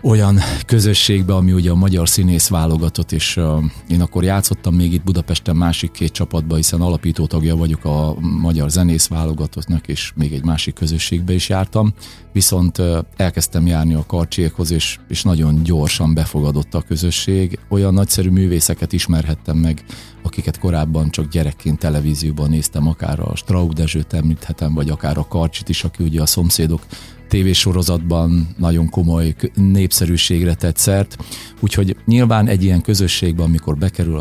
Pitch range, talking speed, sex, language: 80-95 Hz, 140 wpm, male, Hungarian